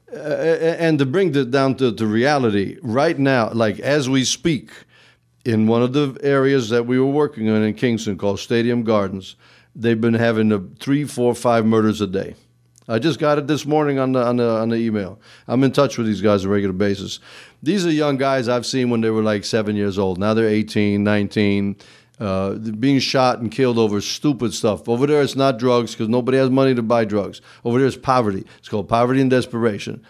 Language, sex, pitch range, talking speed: English, male, 110-140 Hz, 220 wpm